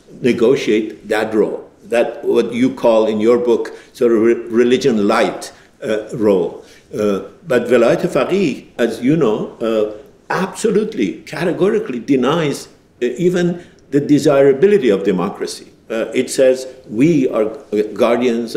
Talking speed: 120 wpm